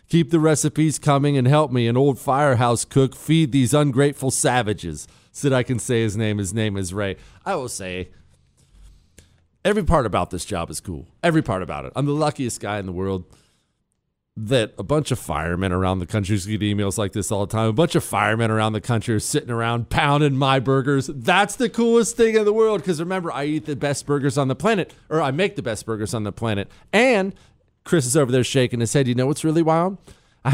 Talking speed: 225 wpm